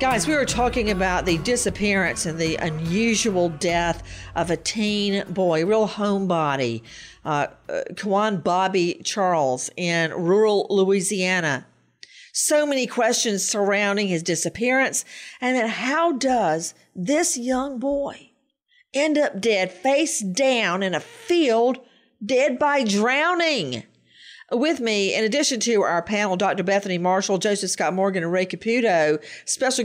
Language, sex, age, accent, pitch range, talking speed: English, female, 50-69, American, 185-265 Hz, 130 wpm